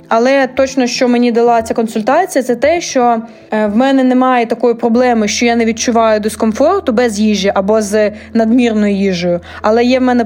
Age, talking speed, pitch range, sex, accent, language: 20-39, 175 wpm, 220-255 Hz, female, native, Ukrainian